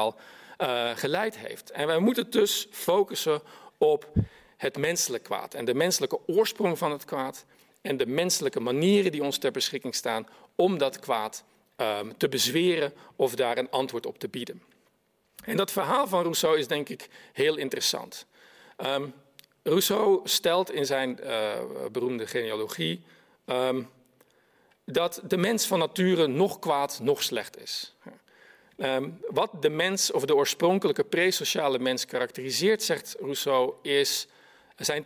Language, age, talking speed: Dutch, 50-69, 140 wpm